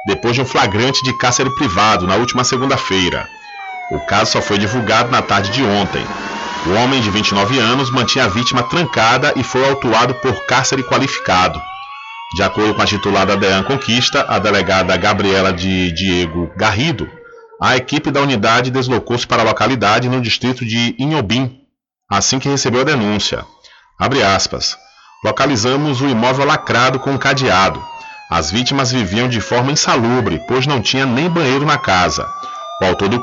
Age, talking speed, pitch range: 40-59, 160 wpm, 110-140 Hz